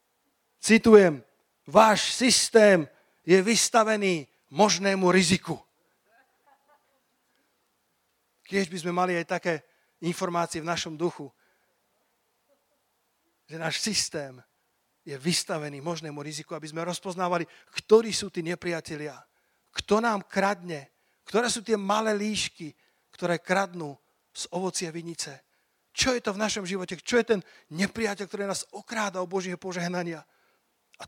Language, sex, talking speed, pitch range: Slovak, male, 120 wpm, 170-205 Hz